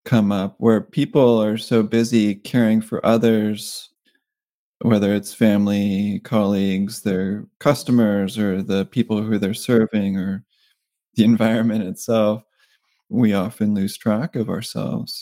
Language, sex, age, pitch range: English, male, 20-39, 105-125 Hz